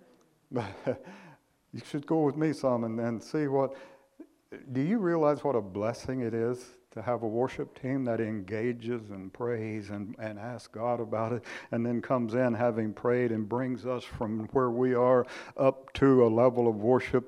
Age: 60-79